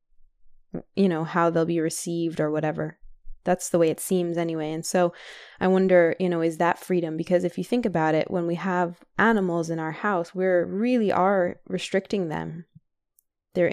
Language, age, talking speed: English, 20-39, 185 wpm